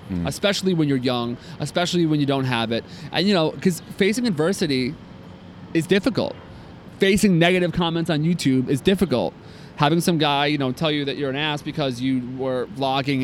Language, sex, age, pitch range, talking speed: English, male, 30-49, 125-155 Hz, 180 wpm